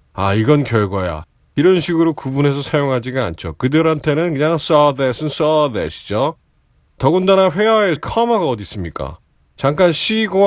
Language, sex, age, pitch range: Korean, male, 30-49, 110-170 Hz